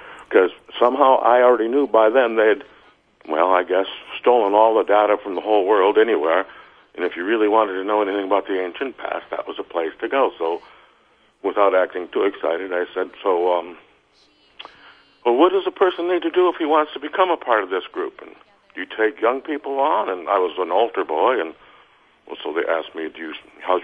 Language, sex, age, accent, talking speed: English, male, 60-79, American, 215 wpm